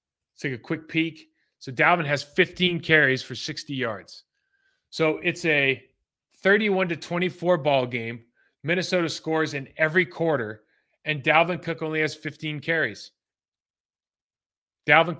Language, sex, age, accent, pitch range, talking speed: English, male, 30-49, American, 130-155 Hz, 130 wpm